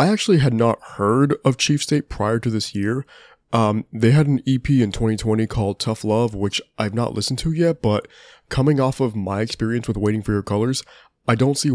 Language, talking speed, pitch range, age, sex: English, 215 wpm, 105-130 Hz, 20-39, male